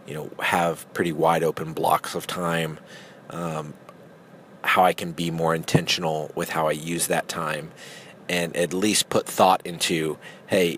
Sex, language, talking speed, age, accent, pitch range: male, English, 160 wpm, 30-49, American, 80-105 Hz